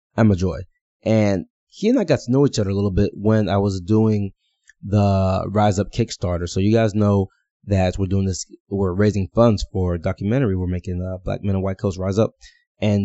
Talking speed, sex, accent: 220 wpm, male, American